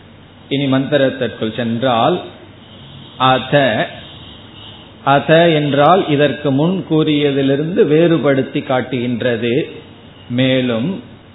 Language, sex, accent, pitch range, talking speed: Tamil, male, native, 125-155 Hz, 60 wpm